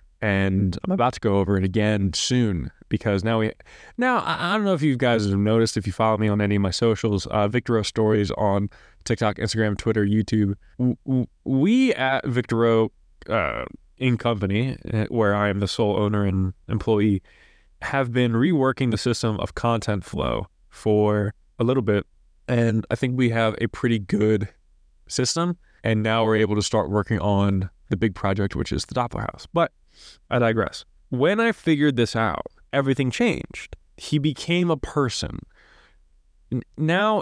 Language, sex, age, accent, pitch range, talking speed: English, male, 20-39, American, 105-130 Hz, 170 wpm